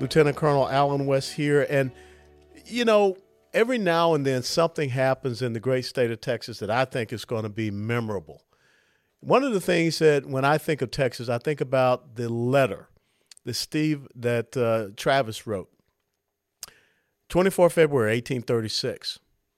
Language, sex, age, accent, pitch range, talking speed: English, male, 50-69, American, 125-165 Hz, 160 wpm